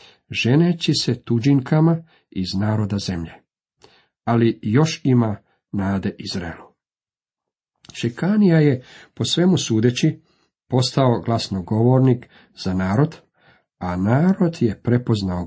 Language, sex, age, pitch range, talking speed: Croatian, male, 50-69, 105-150 Hz, 95 wpm